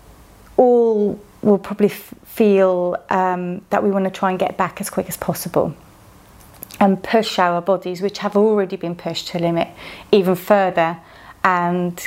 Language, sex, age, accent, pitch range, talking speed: English, female, 30-49, British, 180-210 Hz, 160 wpm